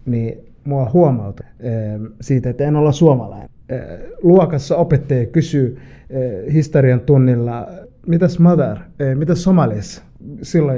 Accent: native